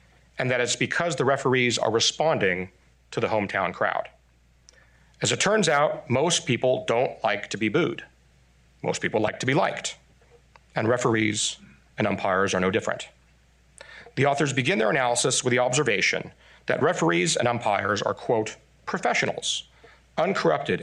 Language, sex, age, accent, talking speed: English, male, 40-59, American, 150 wpm